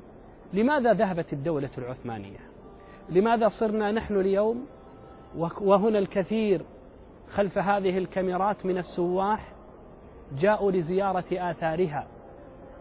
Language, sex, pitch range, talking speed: Arabic, male, 180-220 Hz, 85 wpm